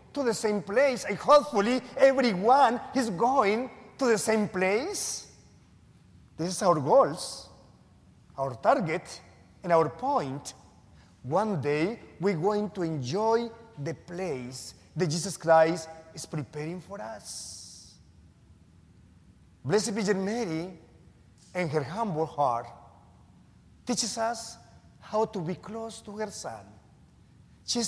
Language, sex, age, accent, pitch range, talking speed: English, male, 40-59, Mexican, 160-235 Hz, 115 wpm